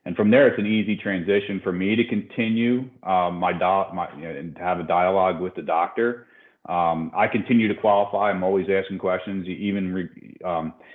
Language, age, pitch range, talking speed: English, 40-59, 90-105 Hz, 175 wpm